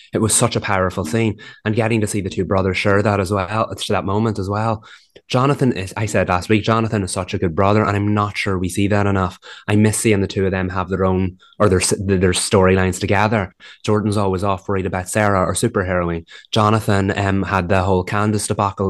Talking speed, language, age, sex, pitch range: 225 wpm, English, 20-39, male, 95-105 Hz